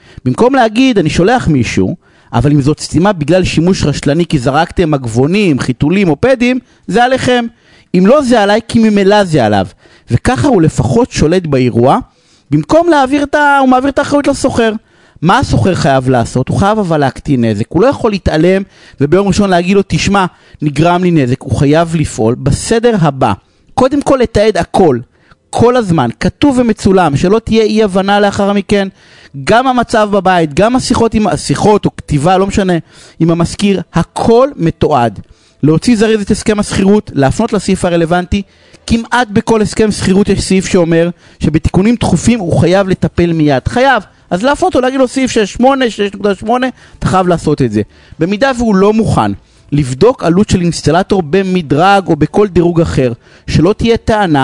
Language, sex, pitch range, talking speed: Hebrew, male, 150-225 Hz, 160 wpm